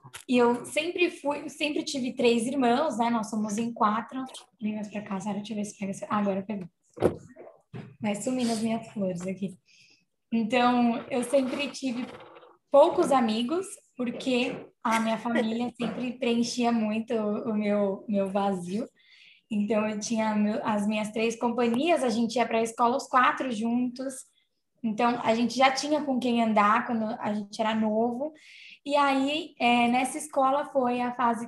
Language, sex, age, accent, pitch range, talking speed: Portuguese, female, 10-29, Brazilian, 215-255 Hz, 165 wpm